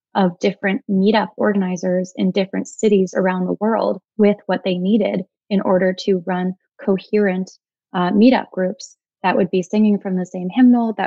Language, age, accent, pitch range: English, 20-39, American, 185-210 Hz